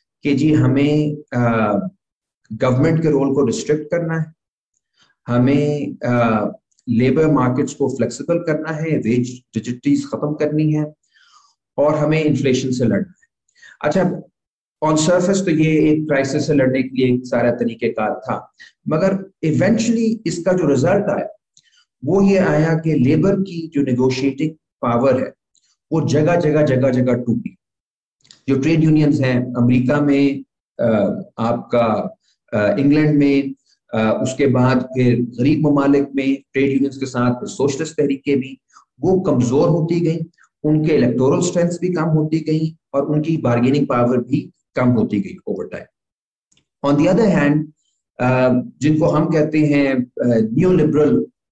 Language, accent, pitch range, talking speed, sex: English, Indian, 125-155 Hz, 90 wpm, male